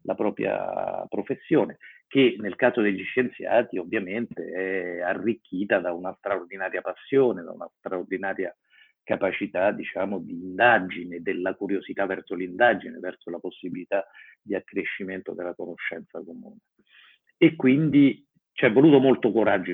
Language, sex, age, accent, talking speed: Italian, male, 50-69, native, 120 wpm